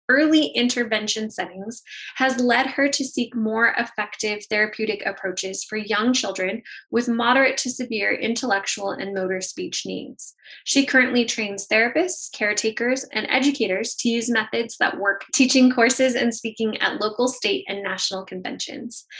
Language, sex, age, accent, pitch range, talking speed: English, female, 10-29, American, 210-245 Hz, 145 wpm